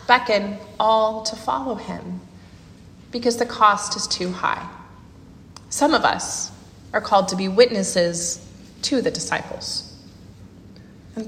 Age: 30-49